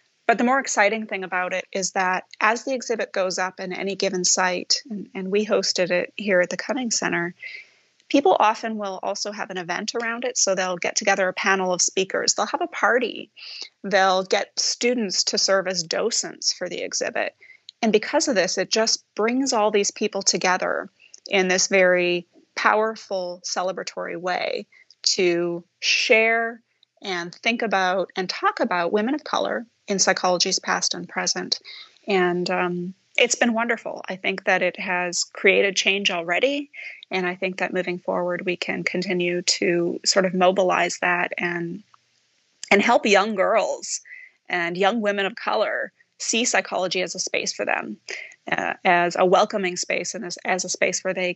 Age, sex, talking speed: 30-49, female, 170 wpm